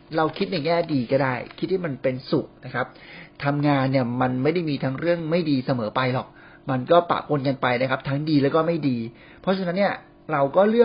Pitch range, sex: 130-175 Hz, male